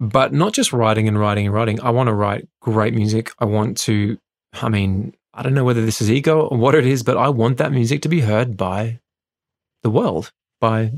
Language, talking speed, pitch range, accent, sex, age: English, 230 wpm, 110-135 Hz, Australian, male, 20-39